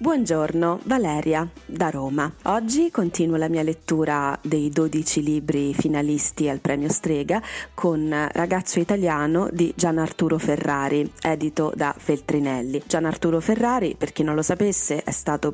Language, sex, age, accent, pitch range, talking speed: Italian, female, 30-49, native, 140-160 Hz, 140 wpm